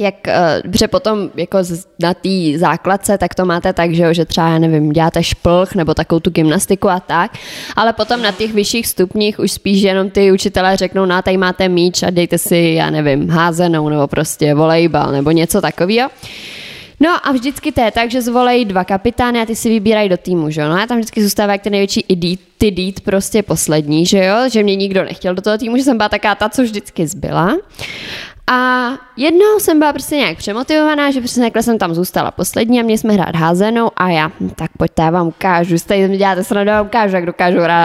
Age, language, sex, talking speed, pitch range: 20-39, Czech, female, 220 wpm, 175-225 Hz